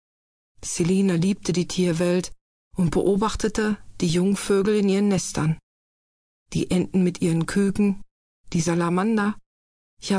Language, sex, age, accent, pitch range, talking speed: German, female, 40-59, German, 165-195 Hz, 110 wpm